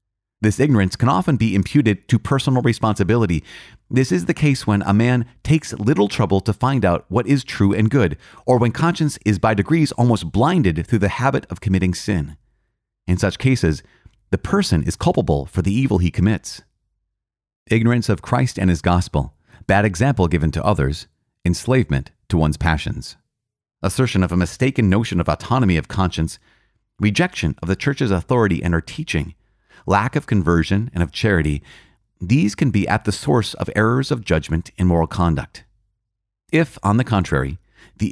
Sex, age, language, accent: male, 30-49, English, American